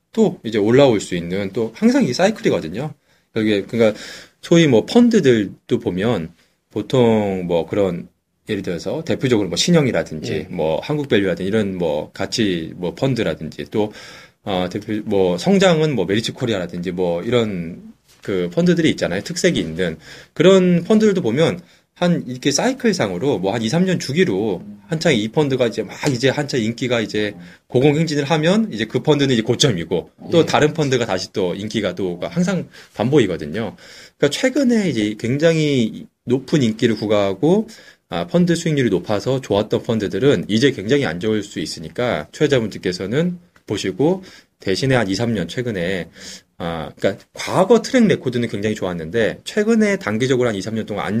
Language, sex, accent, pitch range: Korean, male, native, 105-170 Hz